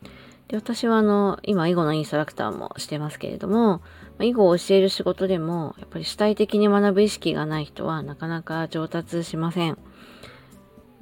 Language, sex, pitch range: Japanese, female, 155-200 Hz